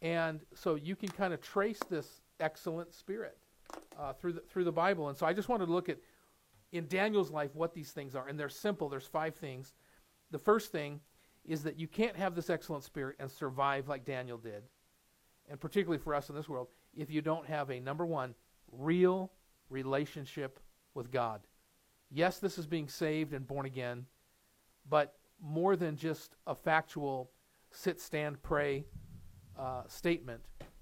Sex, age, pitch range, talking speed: male, 40-59, 135-165 Hz, 175 wpm